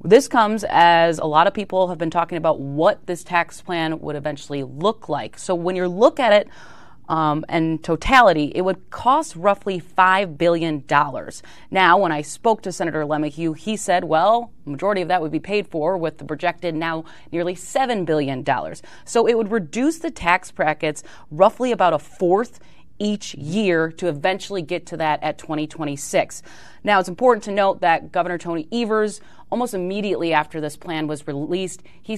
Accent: American